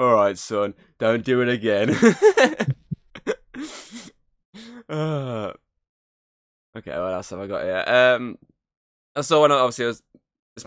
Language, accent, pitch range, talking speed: English, British, 110-155 Hz, 130 wpm